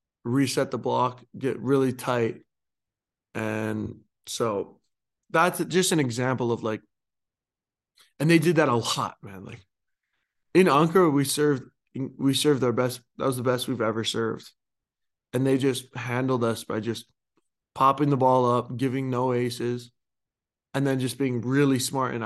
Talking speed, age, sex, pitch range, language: 155 wpm, 20-39, male, 115-135 Hz, English